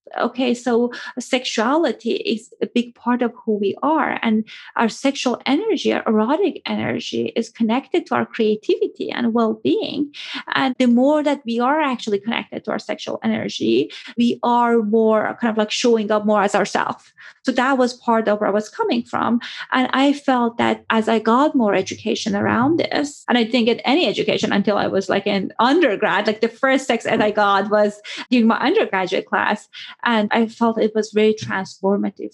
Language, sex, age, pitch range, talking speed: English, female, 30-49, 215-255 Hz, 185 wpm